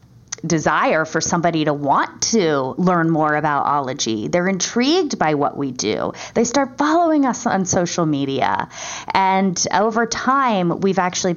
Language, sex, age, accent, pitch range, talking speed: English, female, 20-39, American, 160-215 Hz, 150 wpm